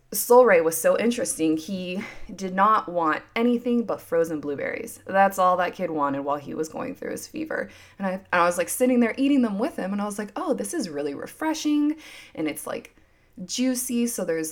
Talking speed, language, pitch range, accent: 215 wpm, English, 170-255 Hz, American